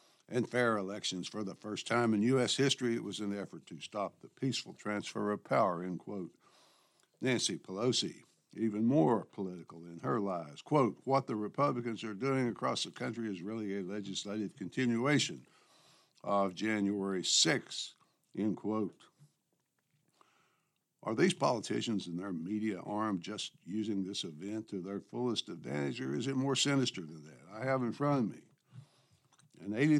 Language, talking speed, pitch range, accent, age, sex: English, 160 wpm, 95-125 Hz, American, 60-79, male